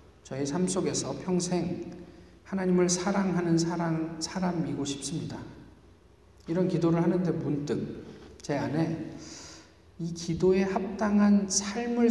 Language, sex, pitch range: Korean, male, 110-180 Hz